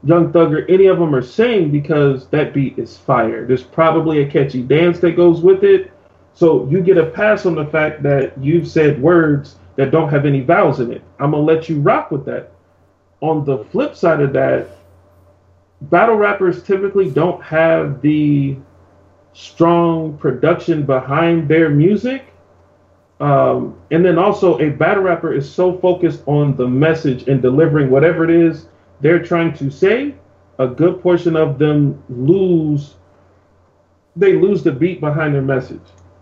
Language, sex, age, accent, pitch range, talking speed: English, male, 30-49, American, 125-170 Hz, 165 wpm